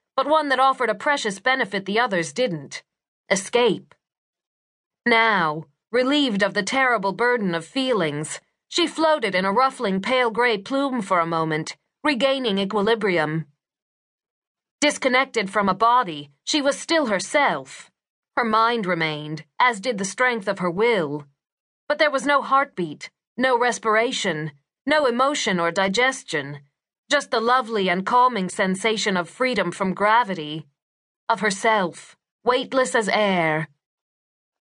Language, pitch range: English, 185-260 Hz